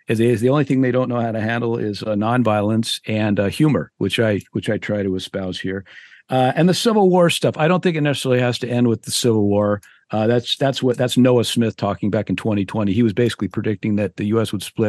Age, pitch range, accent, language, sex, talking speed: 50-69, 100-125 Hz, American, English, male, 255 wpm